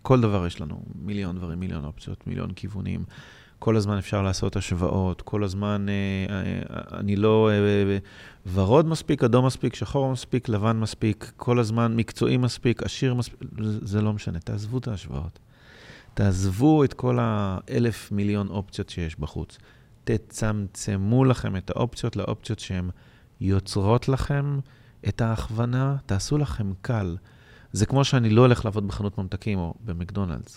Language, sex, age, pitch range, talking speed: Hebrew, male, 30-49, 95-120 Hz, 150 wpm